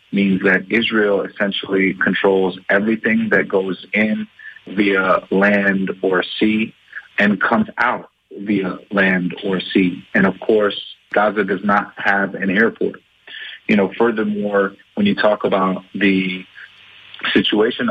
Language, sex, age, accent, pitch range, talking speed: English, male, 30-49, American, 95-105 Hz, 125 wpm